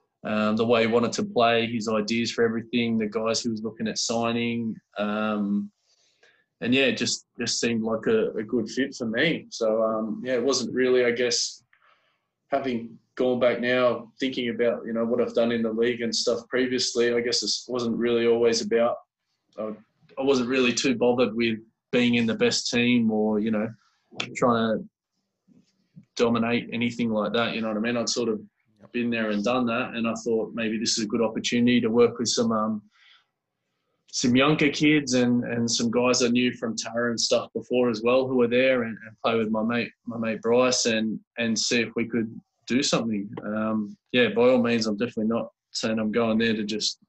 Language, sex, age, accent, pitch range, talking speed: English, male, 20-39, Australian, 110-125 Hz, 205 wpm